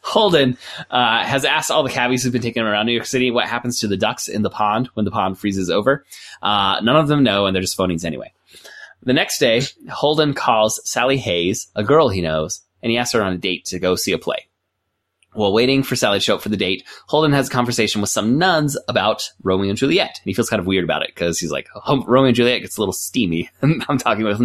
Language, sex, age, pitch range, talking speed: English, male, 20-39, 100-125 Hz, 255 wpm